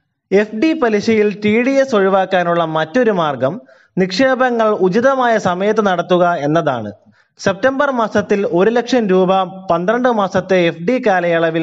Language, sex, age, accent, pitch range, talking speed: Malayalam, male, 20-39, native, 160-220 Hz, 125 wpm